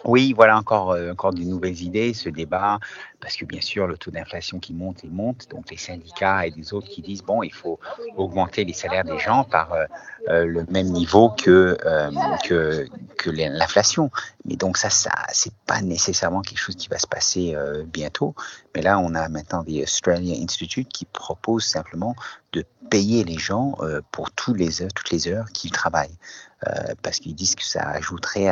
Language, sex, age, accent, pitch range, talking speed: French, male, 50-69, French, 85-110 Hz, 195 wpm